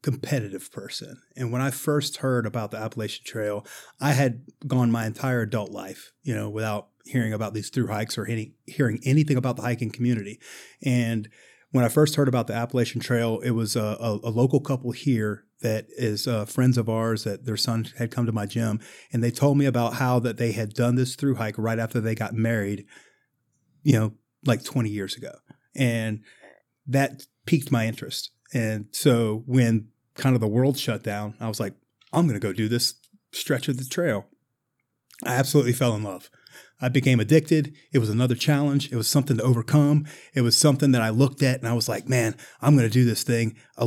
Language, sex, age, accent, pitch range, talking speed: English, male, 30-49, American, 115-135 Hz, 205 wpm